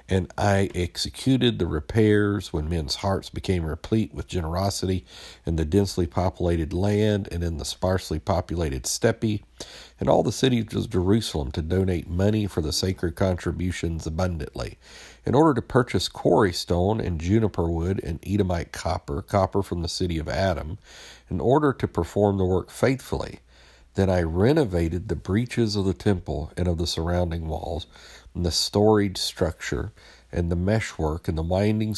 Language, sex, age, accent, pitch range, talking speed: English, male, 50-69, American, 80-100 Hz, 160 wpm